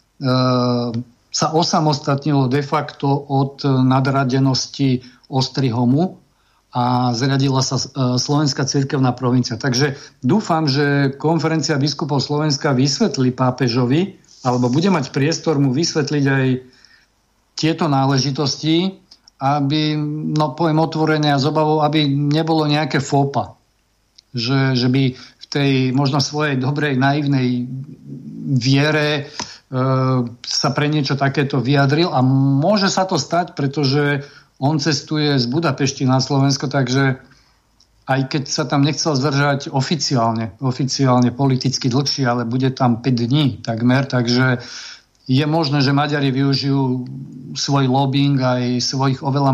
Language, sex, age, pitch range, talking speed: Slovak, male, 50-69, 130-150 Hz, 115 wpm